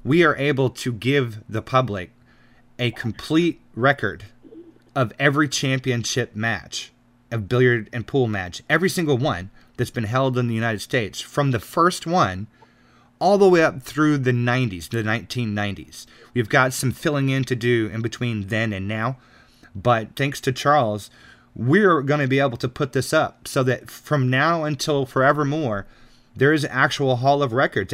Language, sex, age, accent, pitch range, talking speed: English, male, 30-49, American, 110-140 Hz, 170 wpm